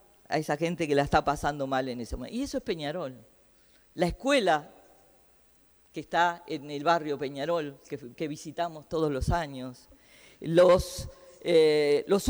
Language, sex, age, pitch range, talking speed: Spanish, female, 40-59, 150-190 Hz, 155 wpm